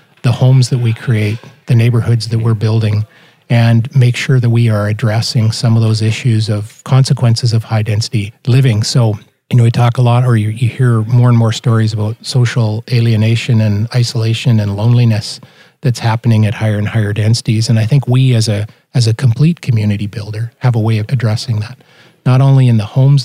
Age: 40-59